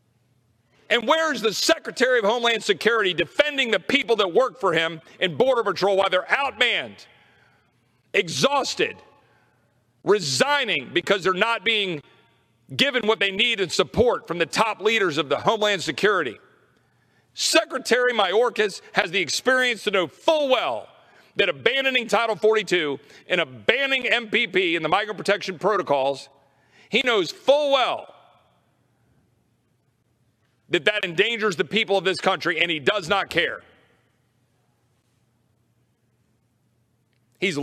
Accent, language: American, English